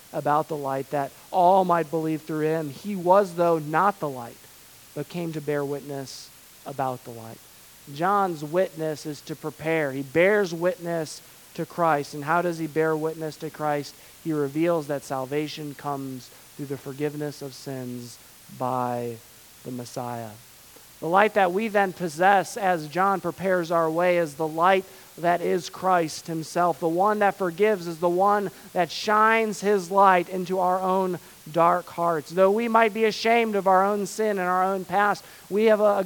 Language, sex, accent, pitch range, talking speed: English, male, American, 150-195 Hz, 175 wpm